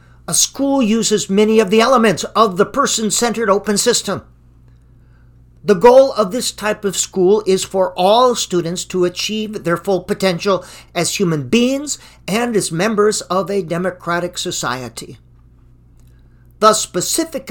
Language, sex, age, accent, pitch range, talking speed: English, male, 50-69, American, 160-225 Hz, 135 wpm